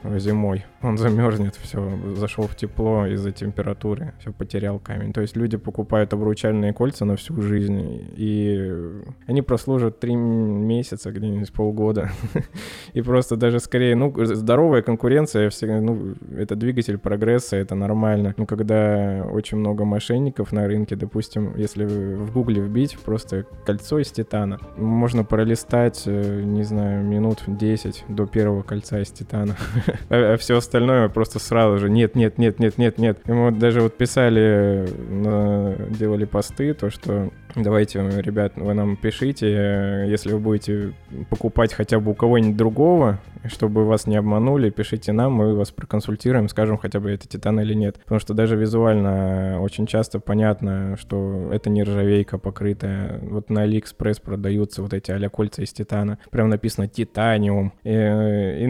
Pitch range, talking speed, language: 100-115 Hz, 145 wpm, Russian